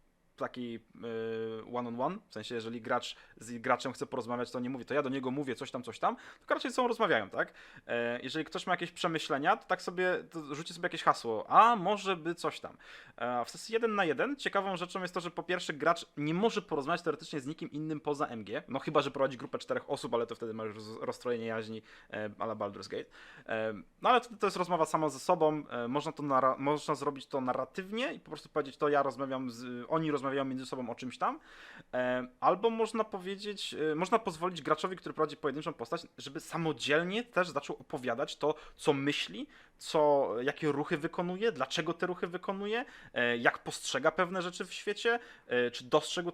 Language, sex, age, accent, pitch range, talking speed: Polish, male, 20-39, native, 130-175 Hz, 195 wpm